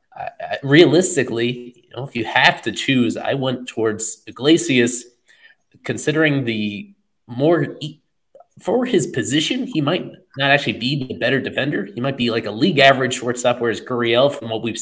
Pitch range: 110-135 Hz